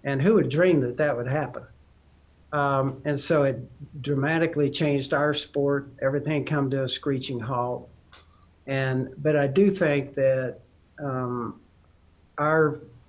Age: 60-79